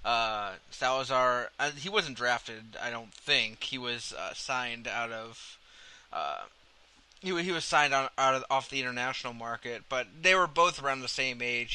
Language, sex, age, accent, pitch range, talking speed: English, male, 20-39, American, 120-145 Hz, 175 wpm